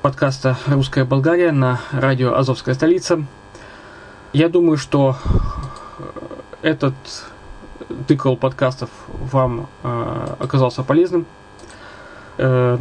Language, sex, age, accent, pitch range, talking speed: Russian, male, 20-39, native, 125-150 Hz, 85 wpm